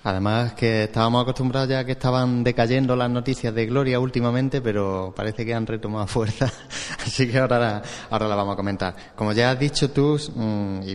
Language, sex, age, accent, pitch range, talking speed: Spanish, male, 30-49, Spanish, 105-125 Hz, 180 wpm